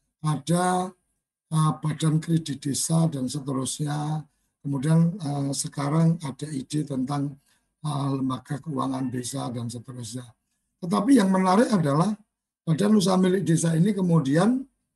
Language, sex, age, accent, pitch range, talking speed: Indonesian, male, 60-79, native, 140-175 Hz, 115 wpm